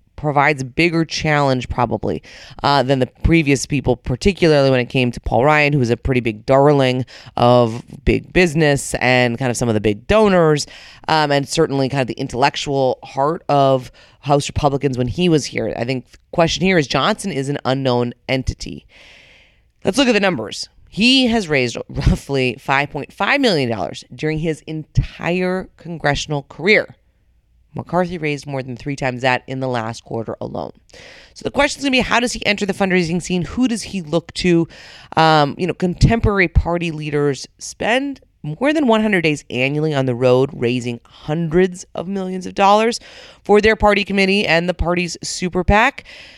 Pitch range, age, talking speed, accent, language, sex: 130-180 Hz, 30-49, 175 wpm, American, English, female